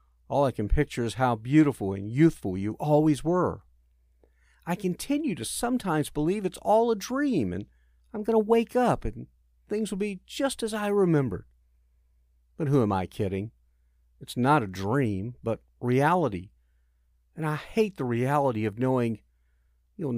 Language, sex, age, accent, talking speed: English, male, 50-69, American, 160 wpm